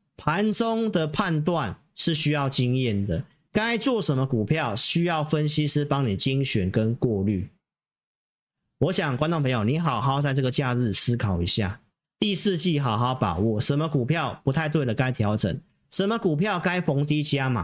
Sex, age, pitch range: male, 40-59, 120-170 Hz